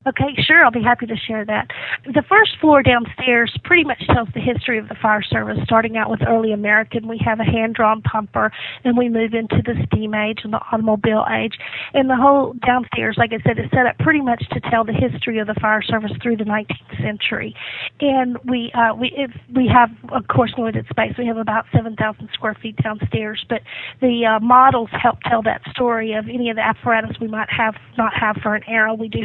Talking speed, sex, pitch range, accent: 220 wpm, female, 215-250 Hz, American